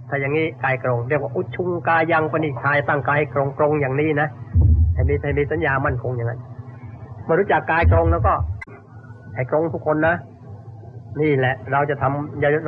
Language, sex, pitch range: Thai, male, 110-150 Hz